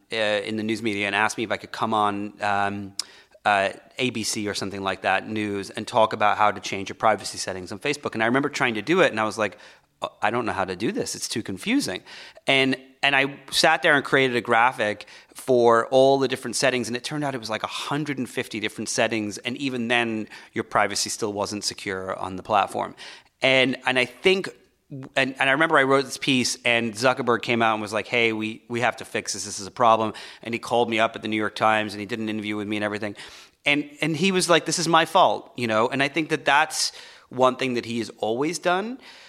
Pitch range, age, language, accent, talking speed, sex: 105-135 Hz, 30-49, English, American, 245 wpm, male